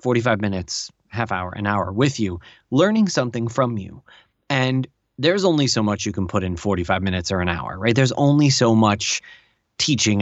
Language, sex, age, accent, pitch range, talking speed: English, male, 20-39, American, 105-130 Hz, 190 wpm